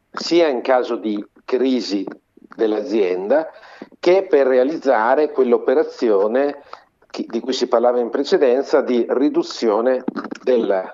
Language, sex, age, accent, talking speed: Italian, male, 50-69, native, 105 wpm